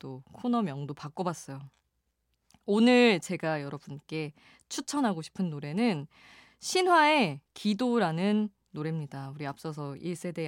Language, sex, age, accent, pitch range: Korean, female, 20-39, native, 155-230 Hz